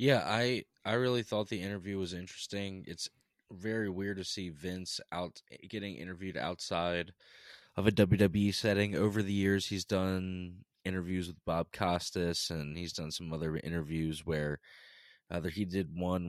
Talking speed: 160 wpm